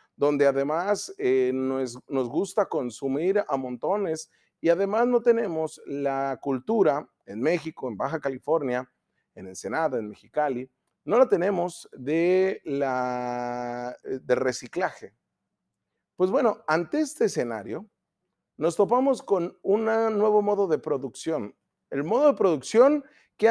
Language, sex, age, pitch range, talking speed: Spanish, male, 40-59, 145-230 Hz, 125 wpm